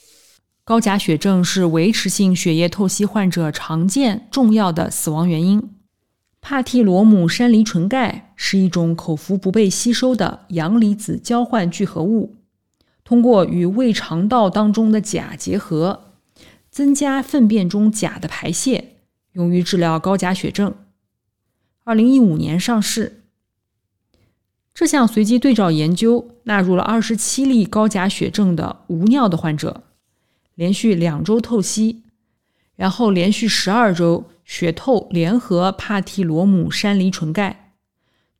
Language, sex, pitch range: Chinese, female, 170-220 Hz